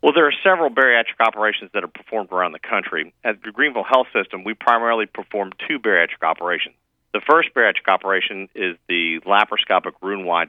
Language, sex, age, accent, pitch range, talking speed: English, male, 40-59, American, 85-110 Hz, 175 wpm